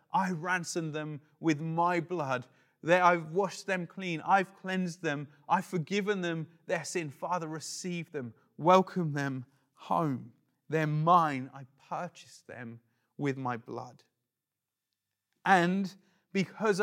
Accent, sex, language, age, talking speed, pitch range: British, male, English, 30-49, 120 wpm, 170-205 Hz